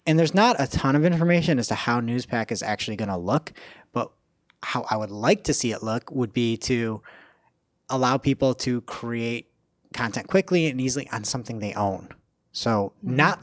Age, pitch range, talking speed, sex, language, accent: 30-49, 115-155 Hz, 190 wpm, male, English, American